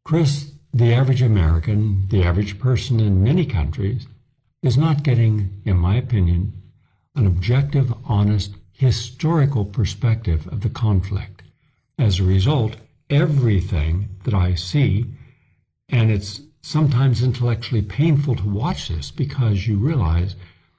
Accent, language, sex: American, English, male